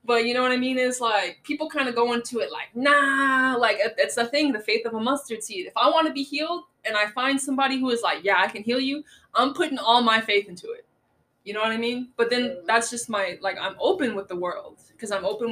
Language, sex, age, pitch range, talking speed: English, female, 20-39, 200-260 Hz, 270 wpm